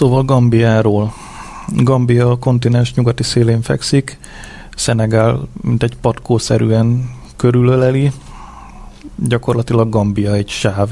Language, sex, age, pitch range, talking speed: Hungarian, male, 30-49, 110-120 Hz, 95 wpm